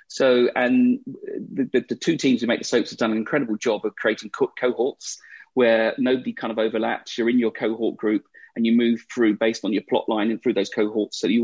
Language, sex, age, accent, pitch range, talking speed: English, male, 30-49, British, 105-130 Hz, 235 wpm